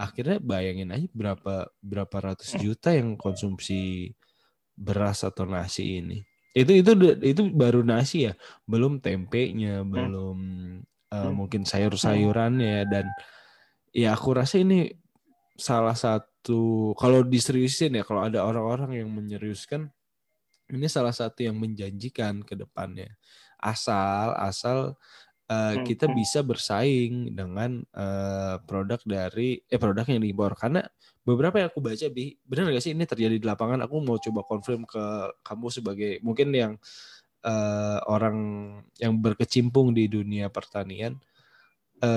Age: 20-39